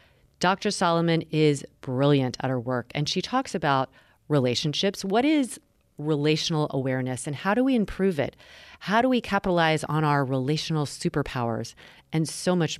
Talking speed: 155 wpm